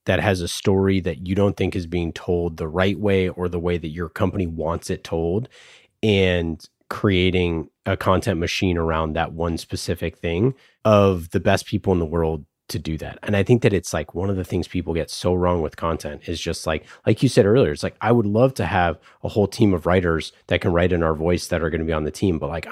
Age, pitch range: 30-49, 85-100 Hz